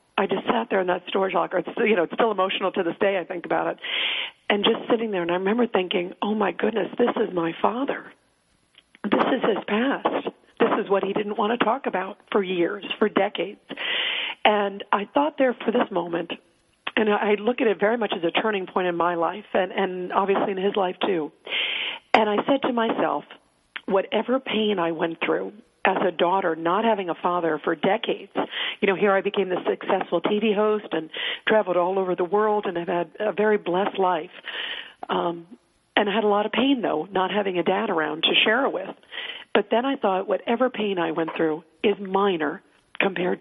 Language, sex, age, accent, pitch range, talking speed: English, female, 50-69, American, 175-215 Hz, 210 wpm